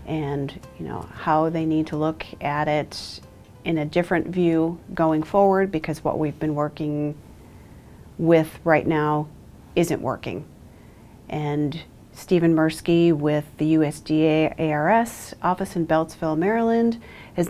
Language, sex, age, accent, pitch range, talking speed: English, female, 40-59, American, 145-170 Hz, 130 wpm